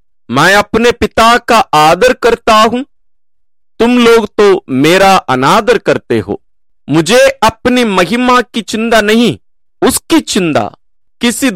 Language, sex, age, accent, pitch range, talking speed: English, male, 50-69, Indian, 170-255 Hz, 120 wpm